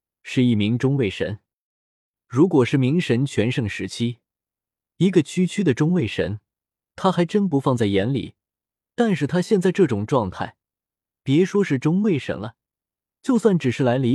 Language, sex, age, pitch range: Chinese, male, 20-39, 115-175 Hz